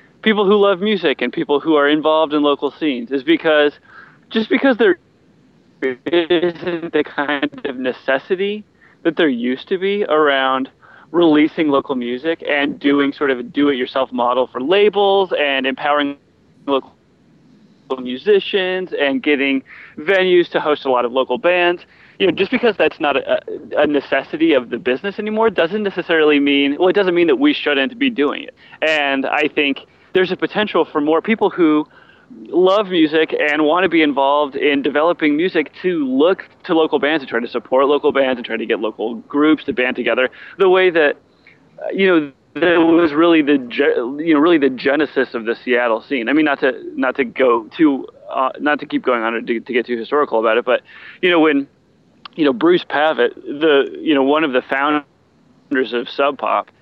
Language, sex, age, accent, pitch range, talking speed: English, male, 30-49, American, 135-195 Hz, 185 wpm